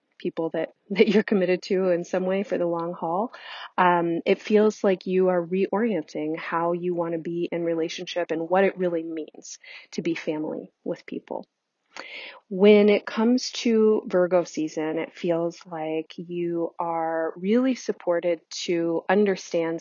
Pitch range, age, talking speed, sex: 165-195 Hz, 30-49, 160 wpm, female